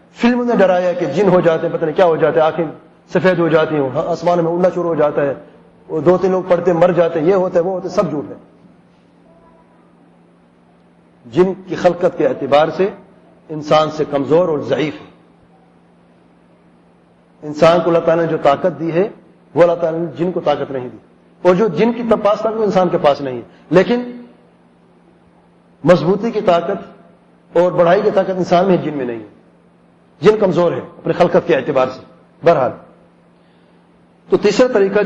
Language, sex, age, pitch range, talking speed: English, male, 40-59, 150-185 Hz, 135 wpm